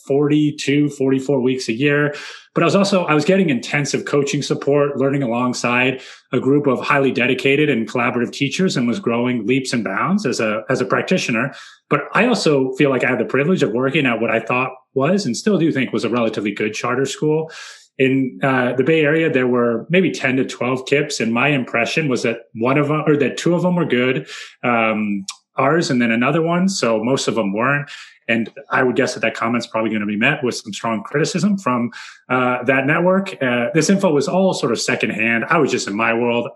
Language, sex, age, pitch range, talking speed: English, male, 30-49, 120-145 Hz, 220 wpm